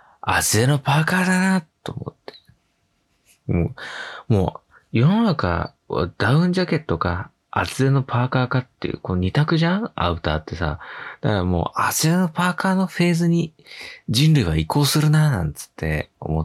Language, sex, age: Japanese, male, 20-39